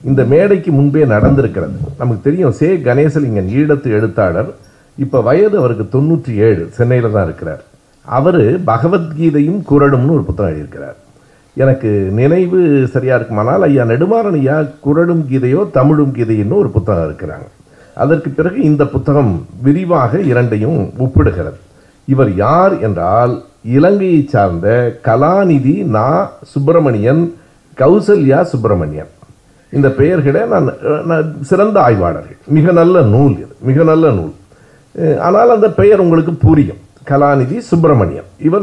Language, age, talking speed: Tamil, 60-79, 110 wpm